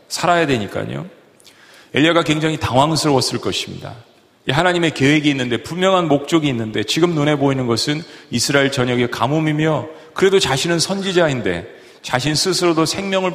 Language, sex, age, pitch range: Korean, male, 40-59, 130-170 Hz